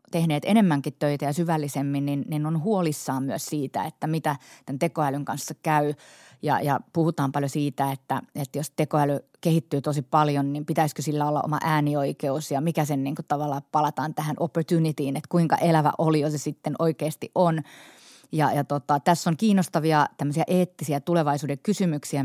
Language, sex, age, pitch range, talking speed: Finnish, female, 30-49, 145-165 Hz, 165 wpm